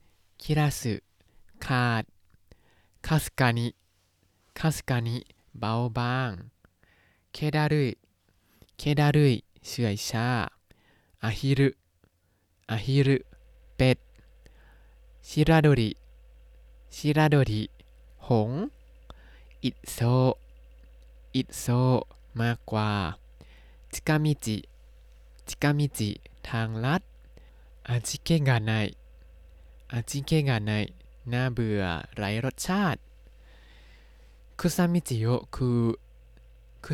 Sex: male